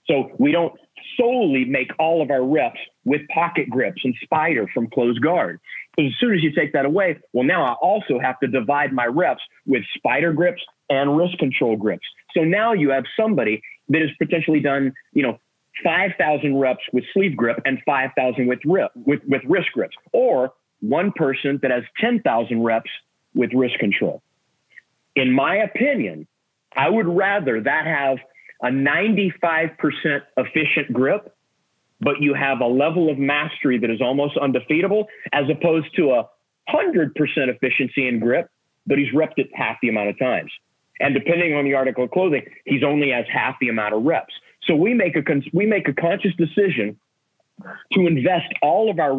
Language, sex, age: English, male, 40-59